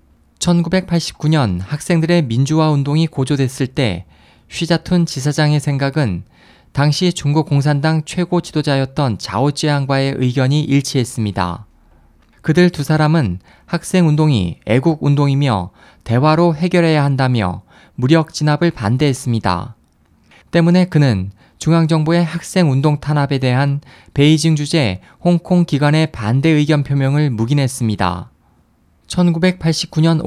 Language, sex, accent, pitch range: Korean, male, native, 115-155 Hz